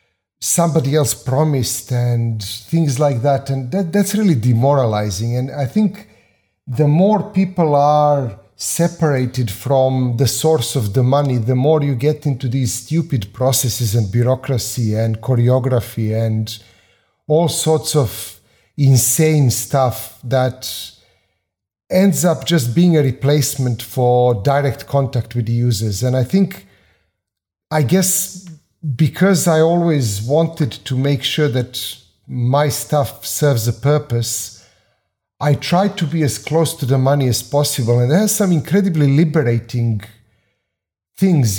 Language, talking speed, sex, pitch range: English, 135 wpm, male, 115-150 Hz